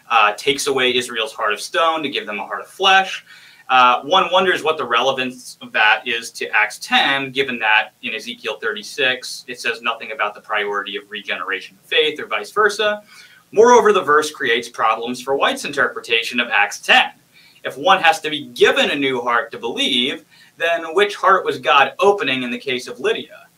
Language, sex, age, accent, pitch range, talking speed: English, male, 30-49, American, 125-200 Hz, 195 wpm